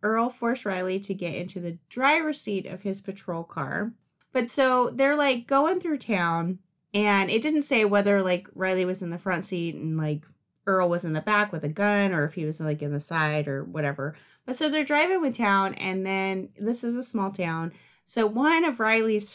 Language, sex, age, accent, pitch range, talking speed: English, female, 30-49, American, 175-230 Hz, 215 wpm